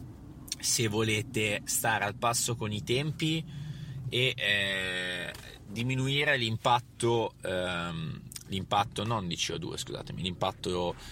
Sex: male